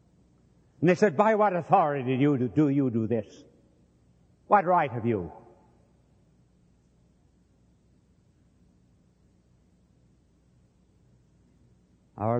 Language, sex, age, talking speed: English, male, 60-79, 75 wpm